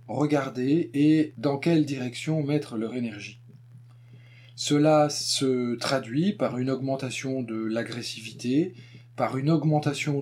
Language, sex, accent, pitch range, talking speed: French, male, French, 120-155 Hz, 110 wpm